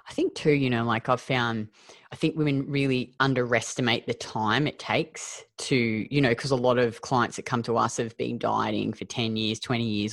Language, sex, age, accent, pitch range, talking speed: English, female, 20-39, Australian, 115-135 Hz, 220 wpm